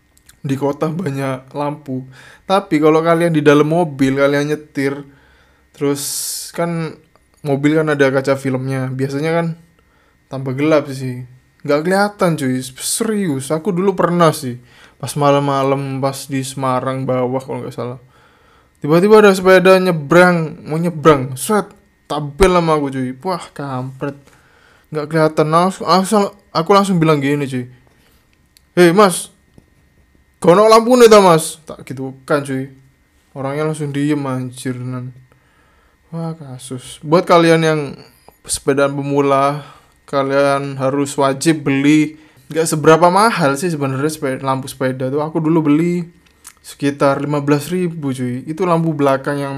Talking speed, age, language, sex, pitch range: 130 wpm, 20-39, Indonesian, male, 135-165 Hz